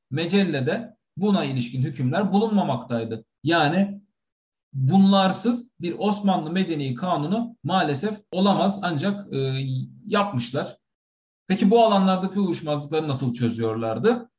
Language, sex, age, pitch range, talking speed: Turkish, male, 40-59, 130-200 Hz, 90 wpm